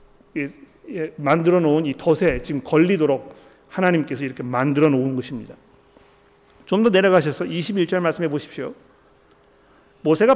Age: 40-59